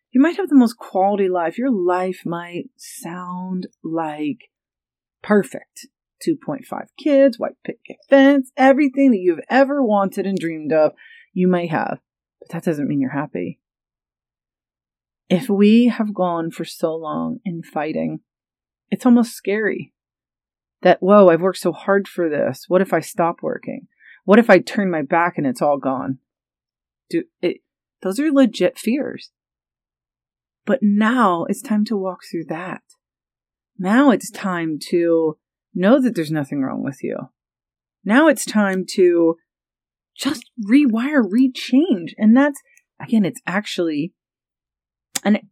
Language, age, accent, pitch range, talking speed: English, 30-49, American, 155-240 Hz, 140 wpm